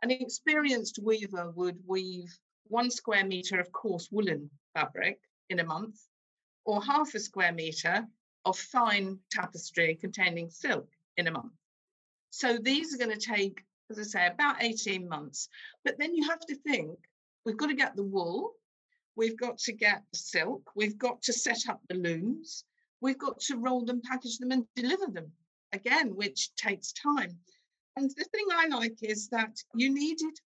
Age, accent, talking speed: 50-69, British, 170 wpm